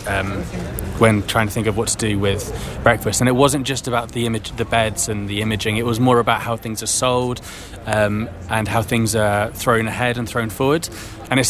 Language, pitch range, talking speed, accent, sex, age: English, 110-130 Hz, 225 wpm, British, male, 20-39